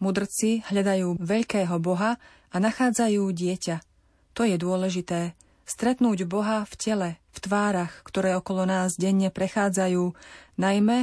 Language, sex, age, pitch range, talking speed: Slovak, female, 30-49, 185-220 Hz, 120 wpm